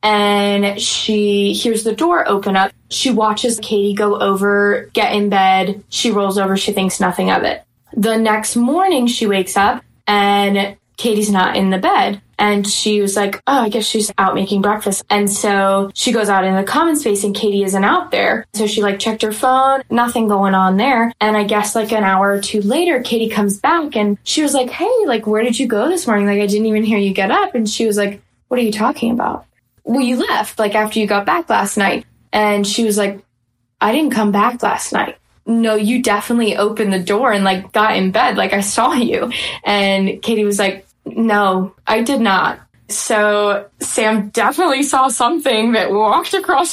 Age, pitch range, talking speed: 10-29, 200-240 Hz, 210 wpm